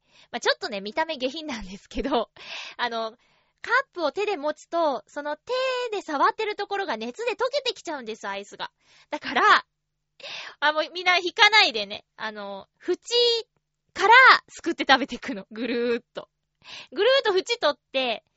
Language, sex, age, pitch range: Japanese, female, 20-39, 225-365 Hz